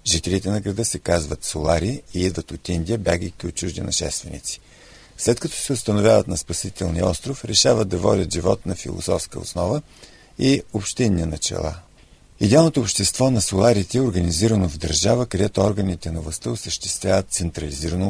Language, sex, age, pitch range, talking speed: Bulgarian, male, 50-69, 90-115 Hz, 150 wpm